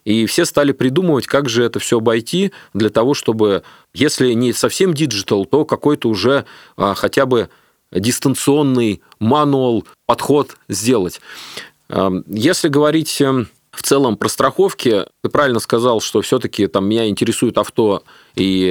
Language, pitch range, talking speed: Russian, 105-140 Hz, 135 wpm